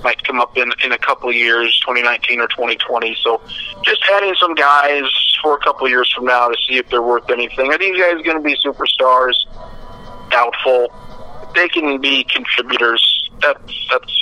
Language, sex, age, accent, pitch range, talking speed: English, male, 50-69, American, 120-140 Hz, 195 wpm